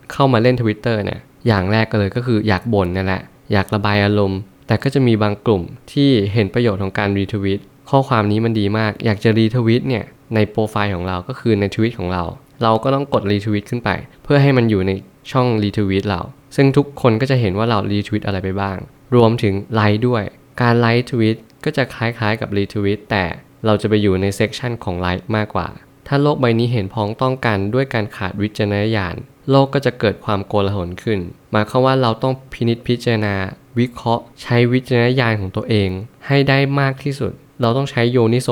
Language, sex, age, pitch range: Thai, male, 20-39, 100-130 Hz